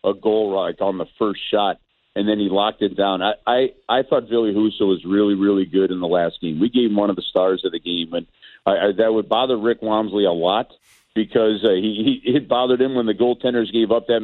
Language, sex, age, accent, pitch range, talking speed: English, male, 50-69, American, 105-130 Hz, 255 wpm